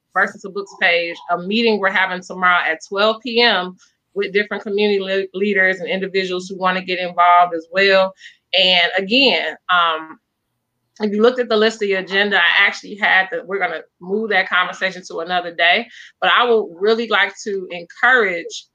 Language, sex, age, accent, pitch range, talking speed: English, female, 20-39, American, 175-205 Hz, 180 wpm